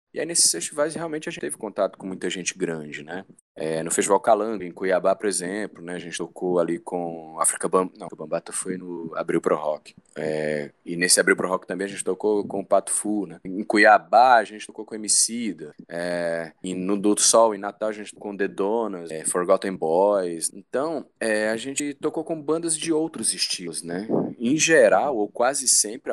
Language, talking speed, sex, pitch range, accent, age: Portuguese, 210 wpm, male, 95-140 Hz, Brazilian, 20-39